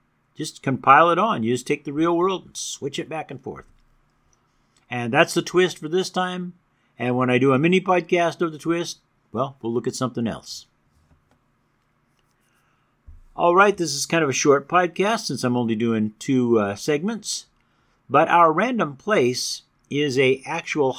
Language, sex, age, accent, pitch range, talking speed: English, male, 50-69, American, 120-155 Hz, 175 wpm